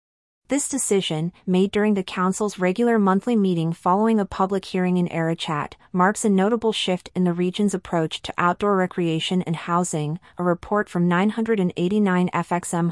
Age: 30-49